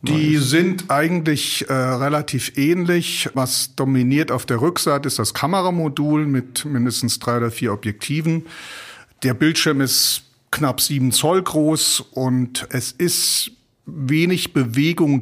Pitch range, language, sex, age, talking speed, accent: 110-140 Hz, German, male, 50-69, 125 wpm, German